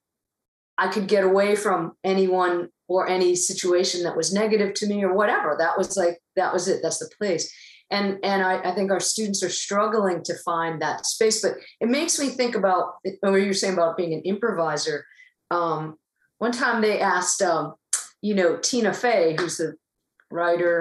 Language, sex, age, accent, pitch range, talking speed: English, female, 40-59, American, 180-235 Hz, 185 wpm